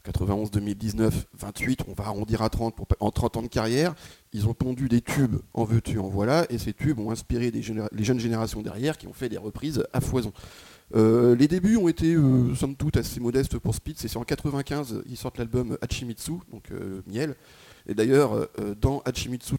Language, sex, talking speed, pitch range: French, male, 205 wpm, 110-145 Hz